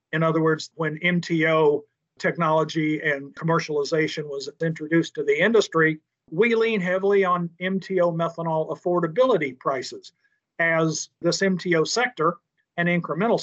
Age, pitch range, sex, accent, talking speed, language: 50-69, 150-185 Hz, male, American, 120 wpm, English